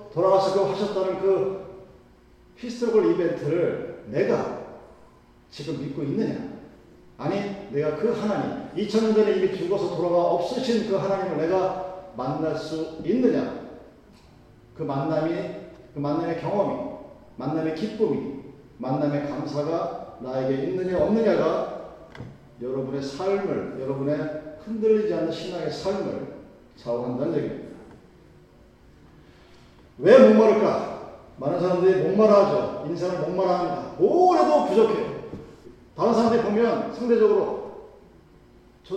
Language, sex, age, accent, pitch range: Korean, male, 40-59, native, 165-230 Hz